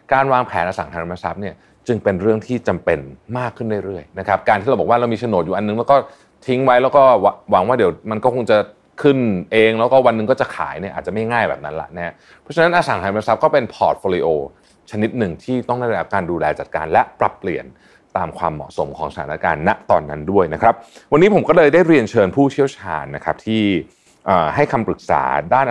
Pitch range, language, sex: 95-125 Hz, Thai, male